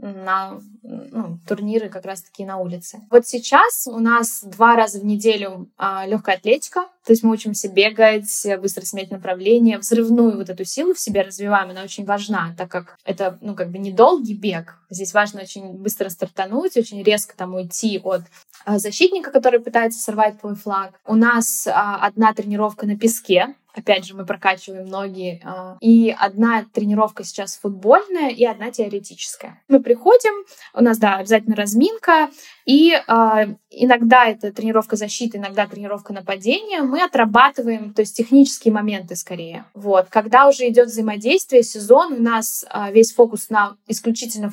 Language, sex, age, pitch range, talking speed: Russian, female, 10-29, 200-235 Hz, 150 wpm